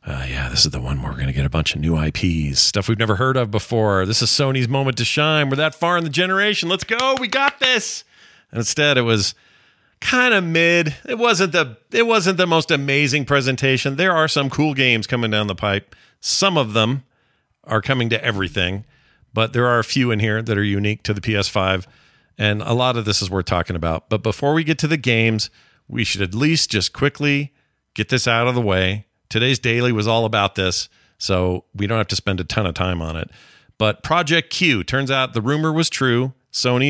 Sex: male